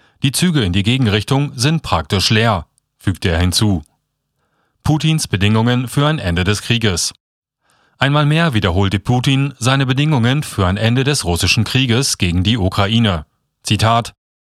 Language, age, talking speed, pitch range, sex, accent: German, 40-59, 140 wpm, 100-135 Hz, male, German